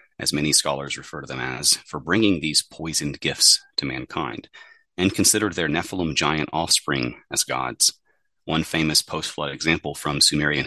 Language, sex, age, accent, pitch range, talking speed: English, male, 30-49, American, 70-80 Hz, 155 wpm